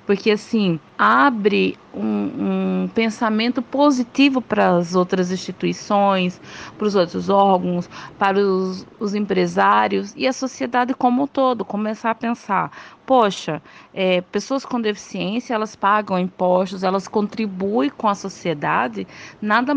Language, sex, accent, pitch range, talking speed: Portuguese, female, Brazilian, 185-240 Hz, 130 wpm